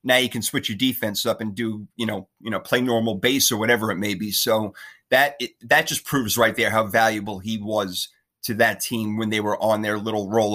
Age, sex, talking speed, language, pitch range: 30-49, male, 240 wpm, English, 110-140 Hz